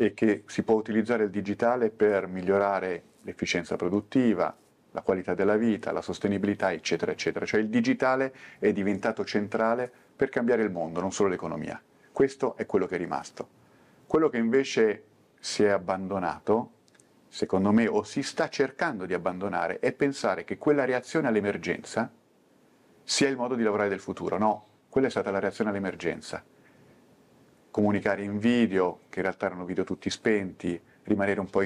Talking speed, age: 160 wpm, 40-59